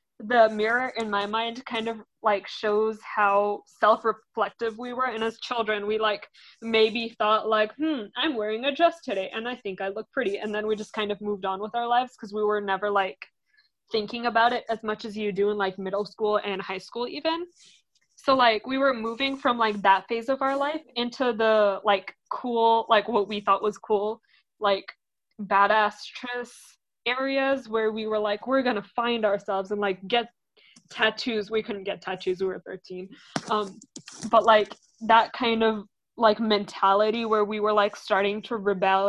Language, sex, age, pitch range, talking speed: English, female, 20-39, 205-230 Hz, 190 wpm